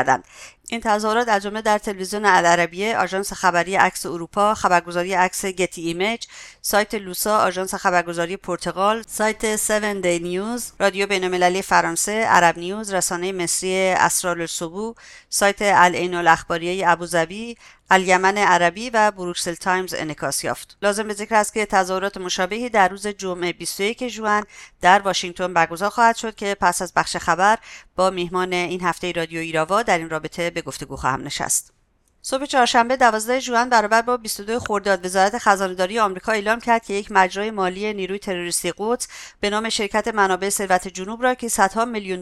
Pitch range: 180-215 Hz